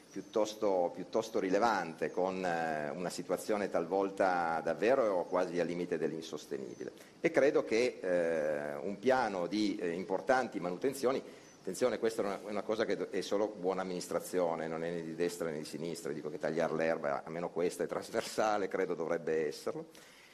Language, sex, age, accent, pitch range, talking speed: Italian, male, 40-59, native, 95-160 Hz, 155 wpm